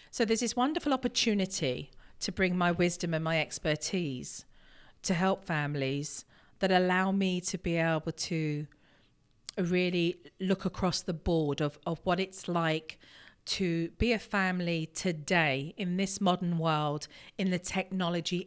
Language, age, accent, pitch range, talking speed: English, 40-59, British, 155-190 Hz, 145 wpm